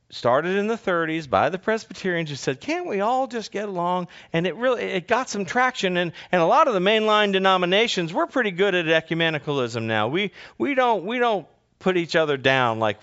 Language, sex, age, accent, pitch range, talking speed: English, male, 40-59, American, 115-180 Hz, 210 wpm